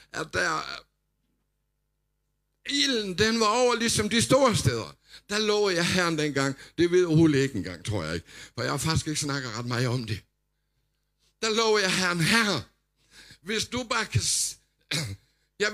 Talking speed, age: 165 wpm, 60-79